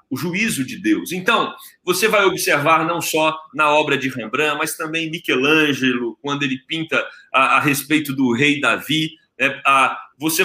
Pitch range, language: 150-180 Hz, Portuguese